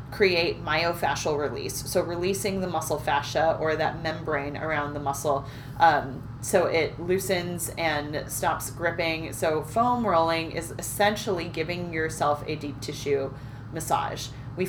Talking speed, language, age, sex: 135 wpm, English, 30-49, female